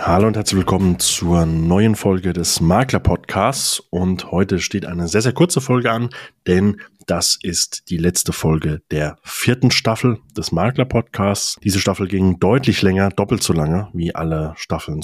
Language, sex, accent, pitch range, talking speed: German, male, German, 85-110 Hz, 160 wpm